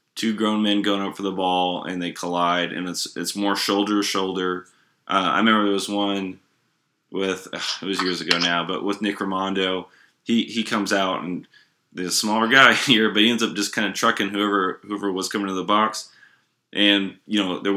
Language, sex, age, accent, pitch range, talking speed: English, male, 20-39, American, 95-105 Hz, 215 wpm